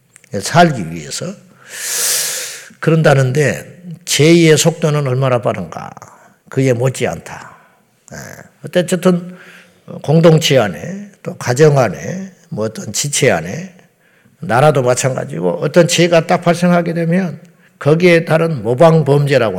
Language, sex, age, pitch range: Korean, male, 50-69, 135-175 Hz